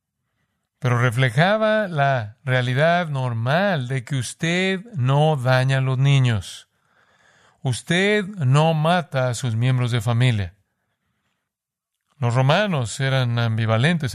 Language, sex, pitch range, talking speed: Spanish, male, 120-145 Hz, 105 wpm